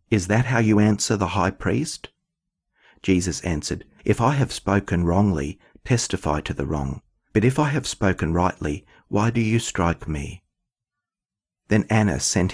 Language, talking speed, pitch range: English, 160 wpm, 85-115 Hz